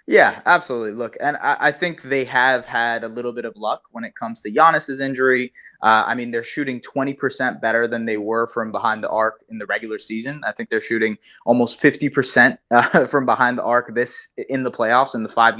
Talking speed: 220 wpm